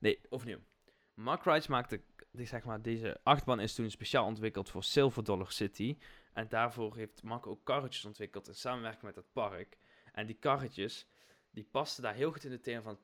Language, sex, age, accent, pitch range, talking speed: Dutch, male, 20-39, Dutch, 110-135 Hz, 195 wpm